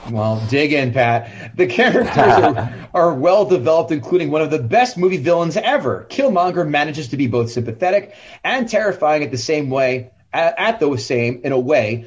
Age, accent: 30-49, American